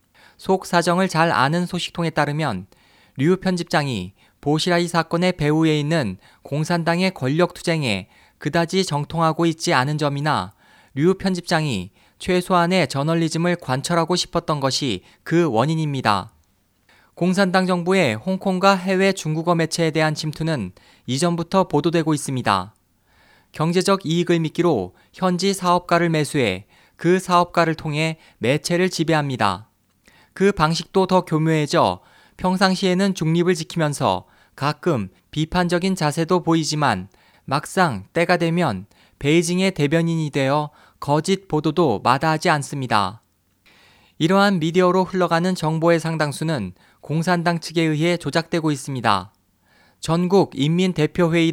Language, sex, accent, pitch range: Korean, male, native, 140-175 Hz